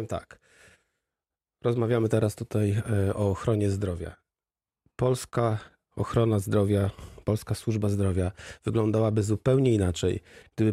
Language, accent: Polish, native